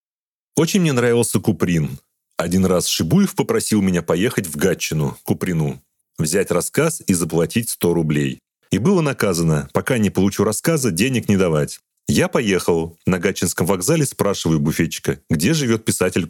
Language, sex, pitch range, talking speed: Russian, male, 80-125 Hz, 145 wpm